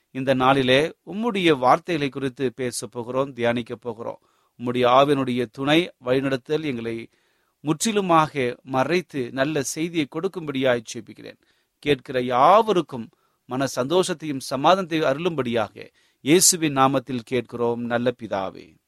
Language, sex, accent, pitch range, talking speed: Tamil, male, native, 130-190 Hz, 100 wpm